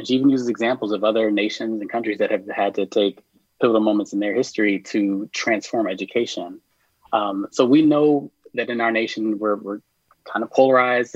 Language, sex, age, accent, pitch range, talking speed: English, male, 30-49, American, 105-135 Hz, 195 wpm